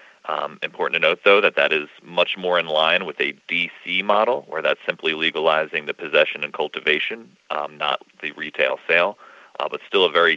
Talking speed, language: 195 wpm, English